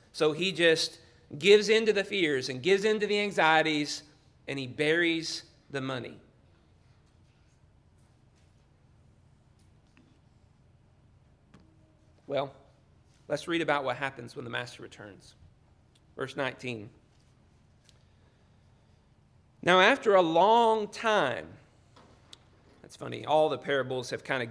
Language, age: English, 30-49